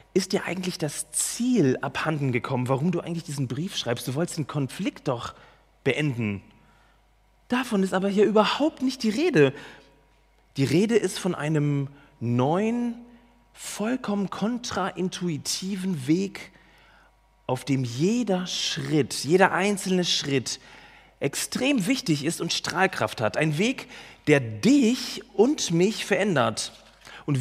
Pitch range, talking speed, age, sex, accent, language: 130-185 Hz, 125 wpm, 30-49, male, German, German